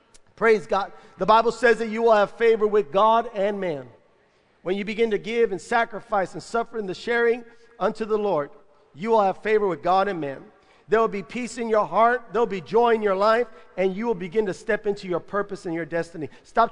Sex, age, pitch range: male, 50-69, 170-220 Hz